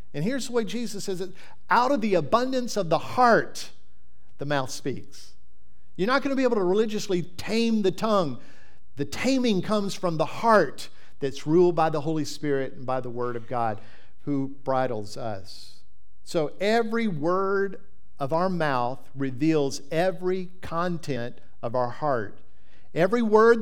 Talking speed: 160 wpm